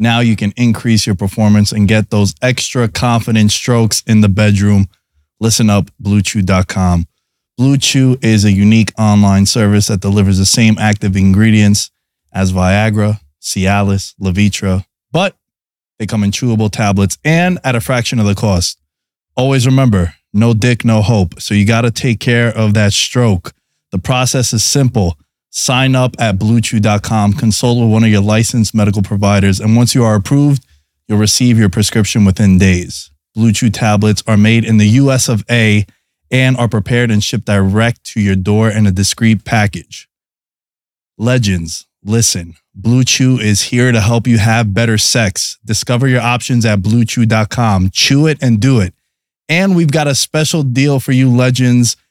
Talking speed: 165 wpm